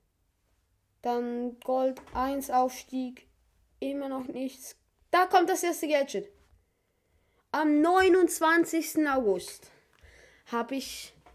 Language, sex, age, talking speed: Polish, female, 20-39, 90 wpm